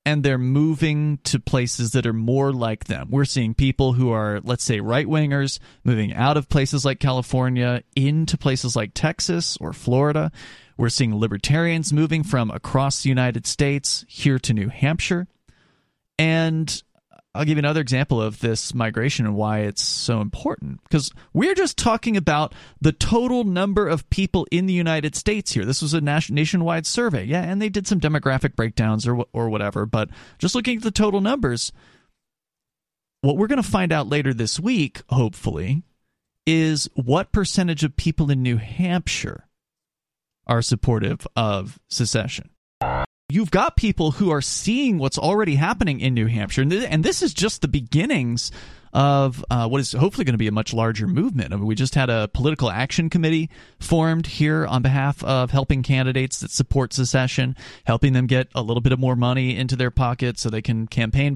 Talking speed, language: 180 wpm, English